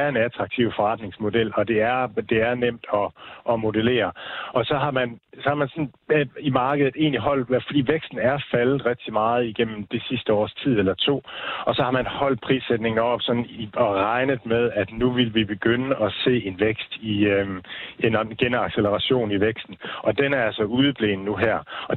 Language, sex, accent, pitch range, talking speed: Danish, male, native, 105-125 Hz, 200 wpm